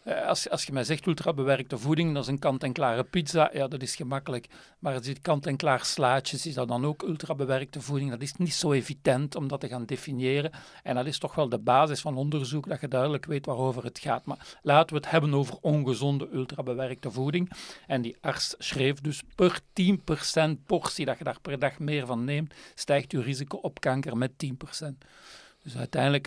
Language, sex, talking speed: Dutch, male, 195 wpm